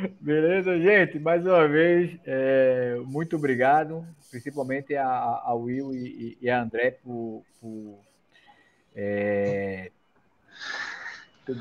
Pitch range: 120-145 Hz